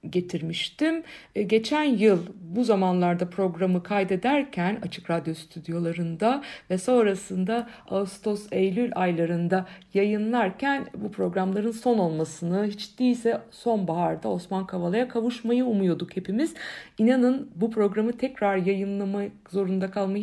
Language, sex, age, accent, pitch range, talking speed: Turkish, female, 60-79, native, 185-245 Hz, 100 wpm